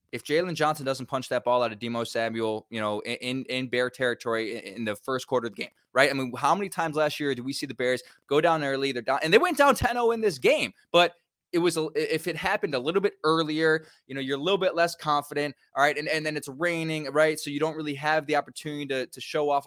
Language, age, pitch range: English, 20-39, 125-170 Hz